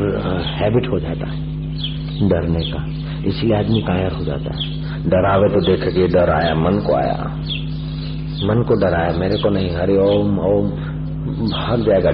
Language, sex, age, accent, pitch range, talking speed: Hindi, male, 50-69, native, 105-150 Hz, 155 wpm